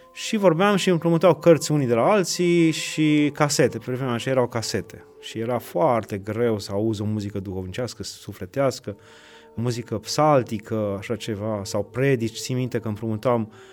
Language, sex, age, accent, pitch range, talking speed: Romanian, male, 30-49, native, 115-150 Hz, 155 wpm